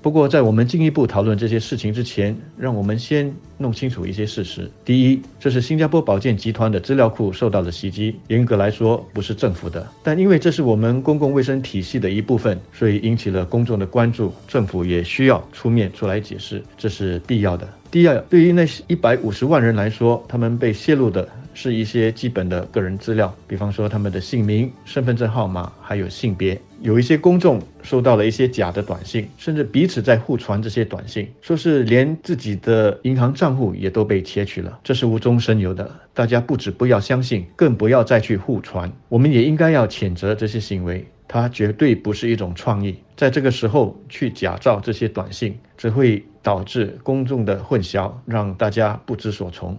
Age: 50-69